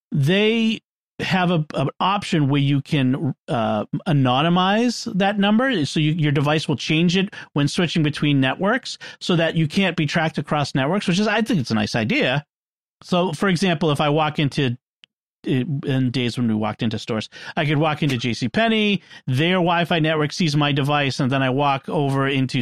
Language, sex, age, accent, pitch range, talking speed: English, male, 40-59, American, 130-175 Hz, 185 wpm